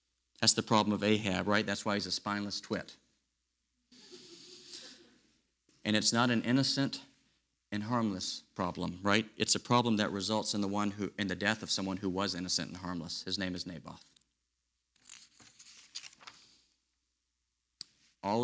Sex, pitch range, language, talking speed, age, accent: male, 100-125 Hz, English, 145 wpm, 50-69, American